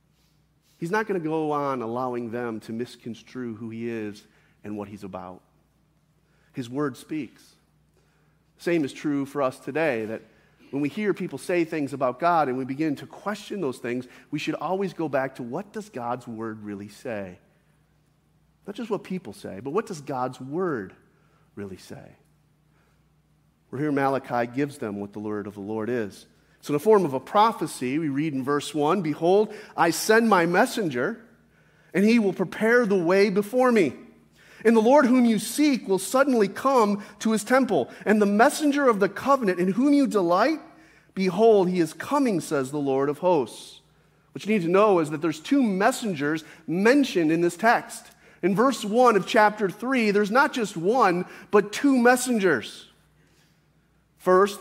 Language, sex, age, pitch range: English, male, 40-59, 140-210 Hz